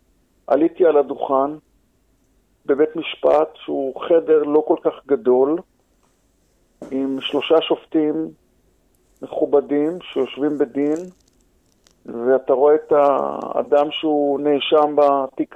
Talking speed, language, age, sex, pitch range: 95 wpm, Hebrew, 50-69, male, 135-165 Hz